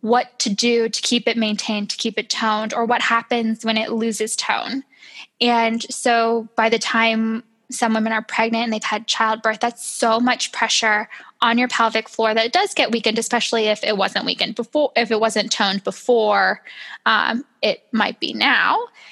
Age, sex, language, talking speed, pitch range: 10-29, female, English, 190 wpm, 225-250 Hz